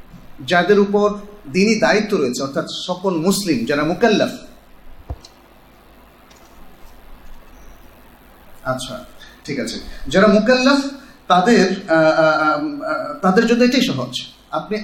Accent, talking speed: native, 65 wpm